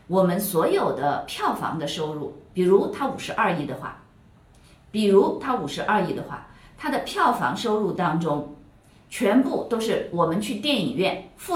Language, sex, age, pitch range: Chinese, female, 50-69, 180-250 Hz